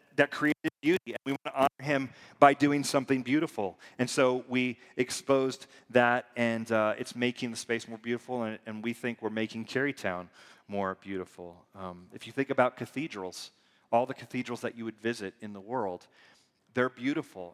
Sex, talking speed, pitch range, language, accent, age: male, 180 wpm, 115-135 Hz, English, American, 30-49